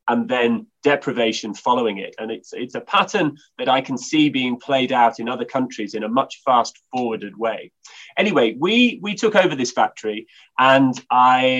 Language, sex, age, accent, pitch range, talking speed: English, male, 30-49, British, 115-155 Hz, 180 wpm